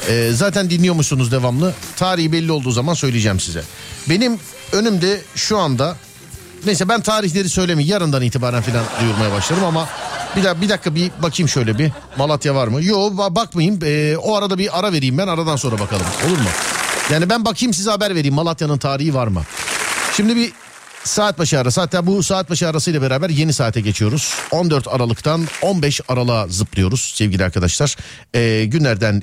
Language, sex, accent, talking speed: Turkish, male, native, 170 wpm